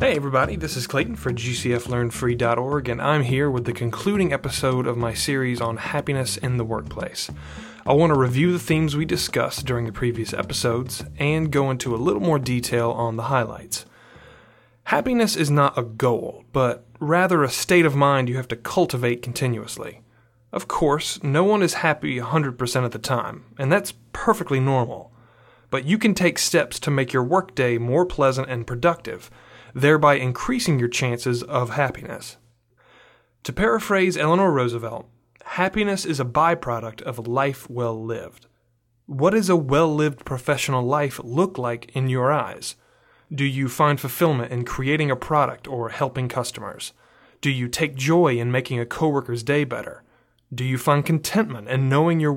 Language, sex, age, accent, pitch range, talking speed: English, male, 30-49, American, 120-150 Hz, 165 wpm